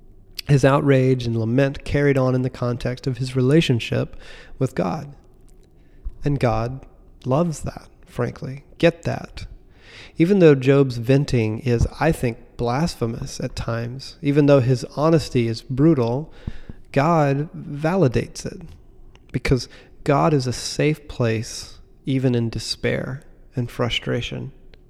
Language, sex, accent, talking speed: English, male, American, 125 wpm